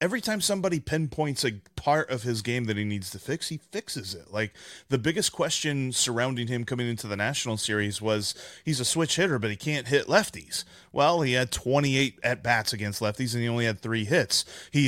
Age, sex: 30-49, male